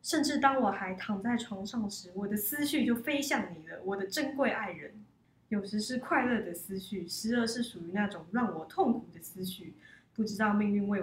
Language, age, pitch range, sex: Chinese, 20-39, 185-230 Hz, female